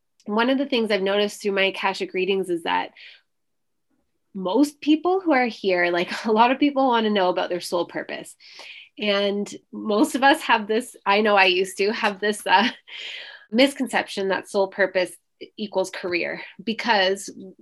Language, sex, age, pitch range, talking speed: English, female, 20-39, 180-220 Hz, 170 wpm